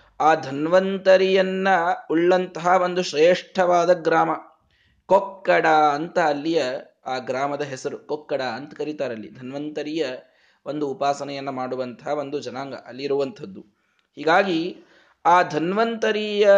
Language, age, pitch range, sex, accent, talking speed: Kannada, 20-39, 125-175 Hz, male, native, 95 wpm